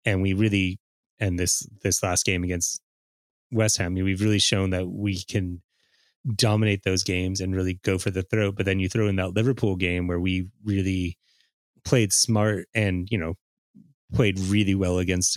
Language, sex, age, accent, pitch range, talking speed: English, male, 30-49, American, 90-105 Hz, 180 wpm